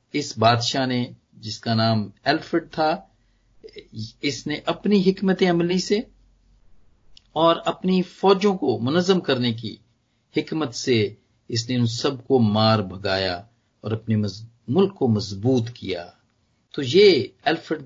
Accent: native